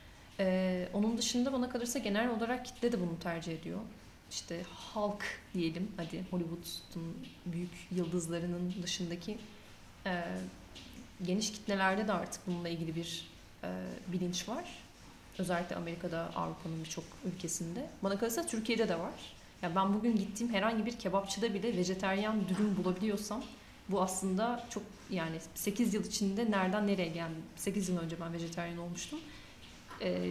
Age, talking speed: 30-49, 140 wpm